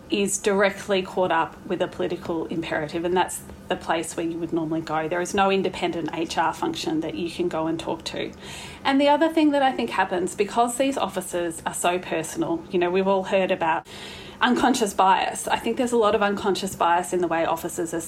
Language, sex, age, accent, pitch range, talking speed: English, female, 30-49, Australian, 175-205 Hz, 215 wpm